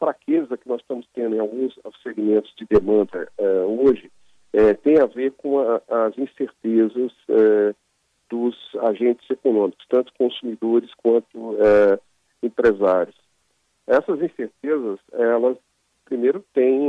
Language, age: Portuguese, 50-69